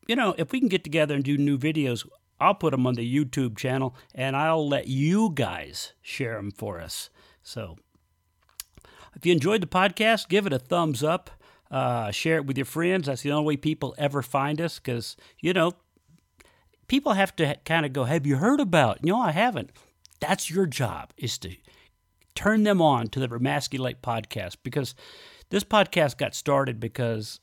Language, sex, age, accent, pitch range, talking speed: English, male, 50-69, American, 130-175 Hz, 190 wpm